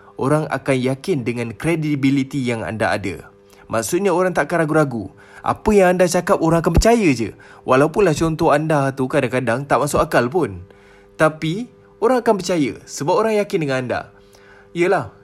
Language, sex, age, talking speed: Malay, male, 20-39, 160 wpm